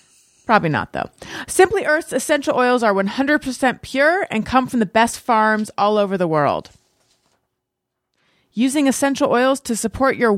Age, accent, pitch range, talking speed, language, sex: 30-49, American, 185-235 Hz, 150 wpm, English, female